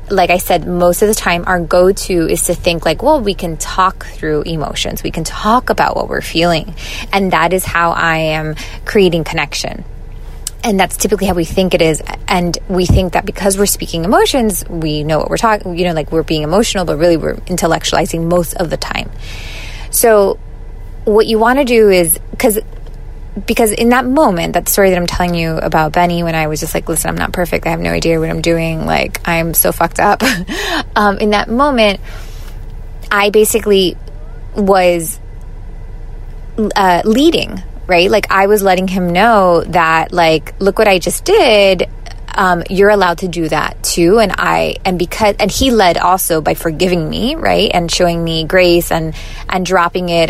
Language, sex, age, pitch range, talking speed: English, female, 20-39, 165-200 Hz, 190 wpm